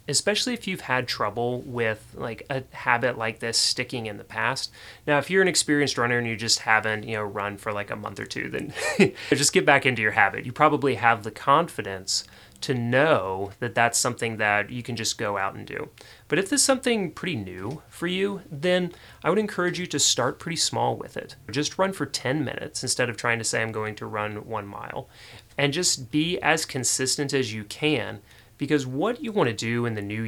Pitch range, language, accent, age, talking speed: 110-145 Hz, English, American, 30-49, 220 wpm